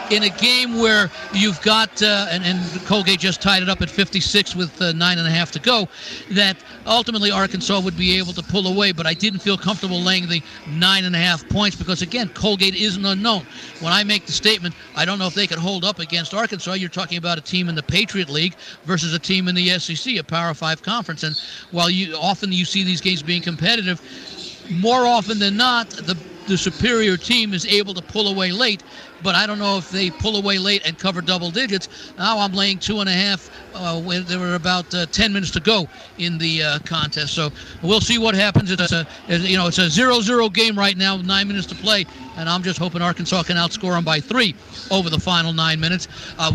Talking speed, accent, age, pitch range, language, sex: 225 wpm, American, 60-79, 175-205 Hz, English, male